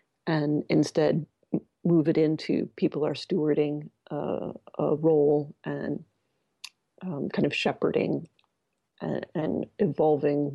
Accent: American